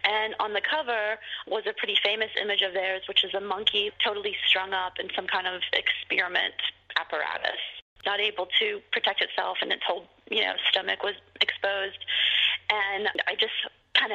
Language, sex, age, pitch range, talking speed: English, female, 30-49, 195-285 Hz, 175 wpm